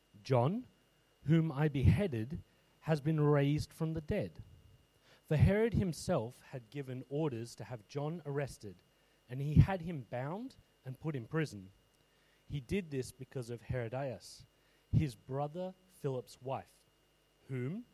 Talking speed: 135 wpm